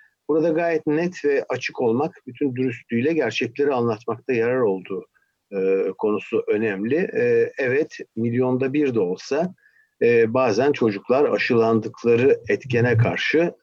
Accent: native